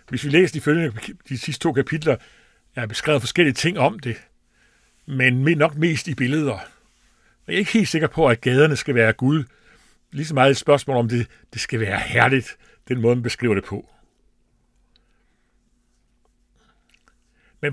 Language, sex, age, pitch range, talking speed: Danish, male, 60-79, 120-155 Hz, 170 wpm